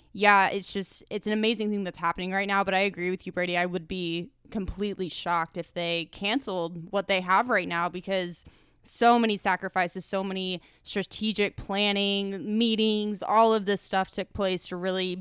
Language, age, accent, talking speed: English, 20-39, American, 185 wpm